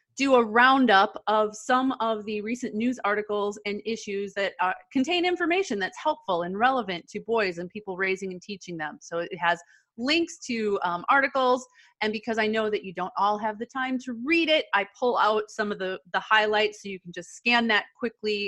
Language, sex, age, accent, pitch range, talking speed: English, female, 30-49, American, 195-245 Hz, 205 wpm